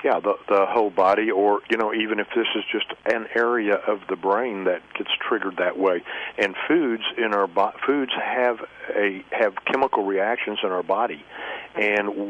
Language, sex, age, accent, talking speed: English, male, 50-69, American, 185 wpm